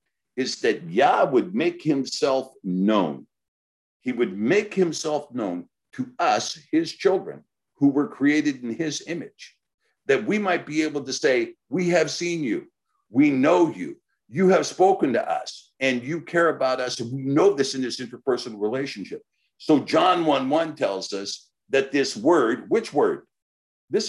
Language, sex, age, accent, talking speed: English, male, 60-79, American, 165 wpm